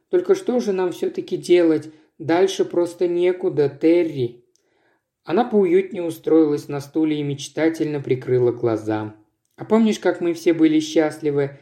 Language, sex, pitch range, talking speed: Russian, male, 145-185 Hz, 135 wpm